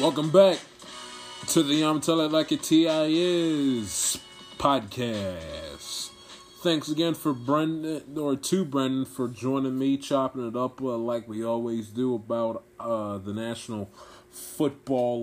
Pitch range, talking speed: 110-130 Hz, 140 wpm